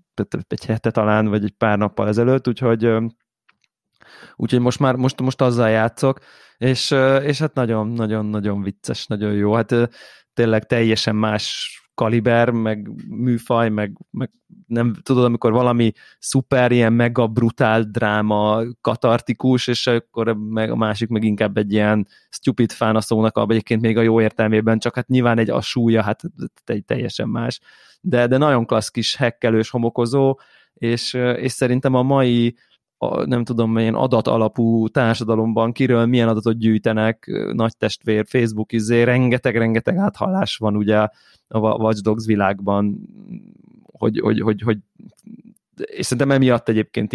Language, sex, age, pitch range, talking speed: Hungarian, male, 20-39, 110-125 Hz, 145 wpm